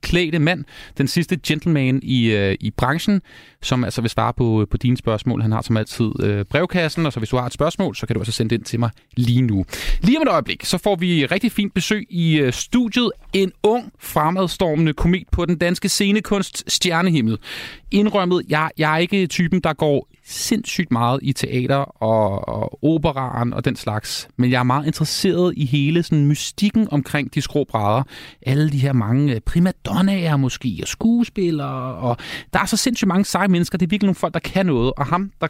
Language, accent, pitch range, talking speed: Danish, native, 125-180 Hz, 205 wpm